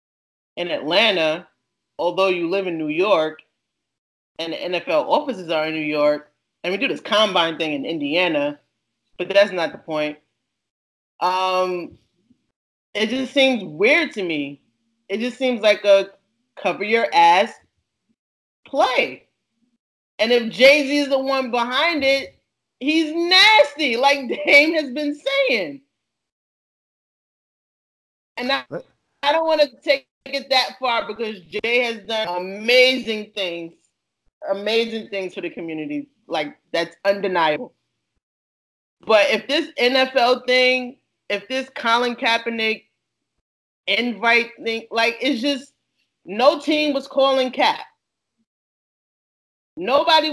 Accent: American